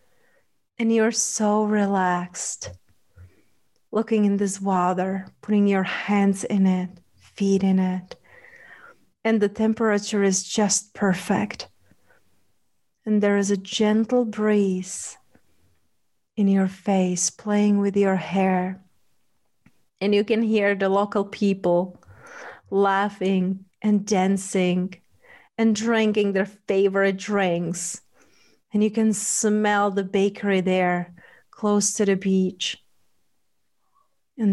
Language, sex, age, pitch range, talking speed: English, female, 30-49, 190-220 Hz, 110 wpm